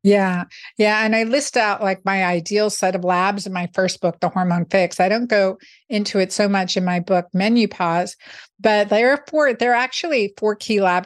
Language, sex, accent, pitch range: English, female, American, 190-230 Hz